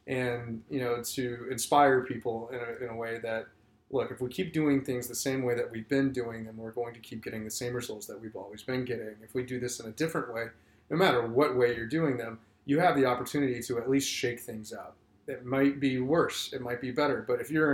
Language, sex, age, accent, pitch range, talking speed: English, male, 20-39, American, 110-130 Hz, 255 wpm